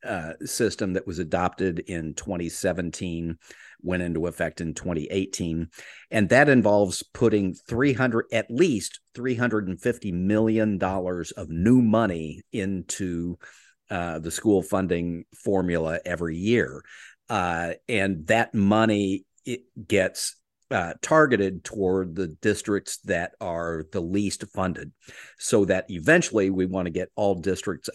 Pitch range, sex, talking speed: 85-105 Hz, male, 120 wpm